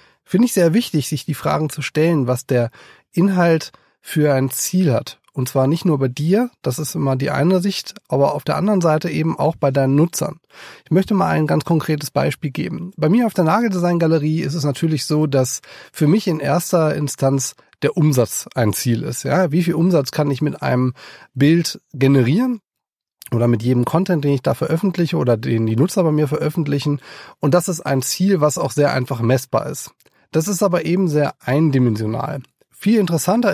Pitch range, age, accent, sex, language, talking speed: 135-175 Hz, 30-49, German, male, German, 195 wpm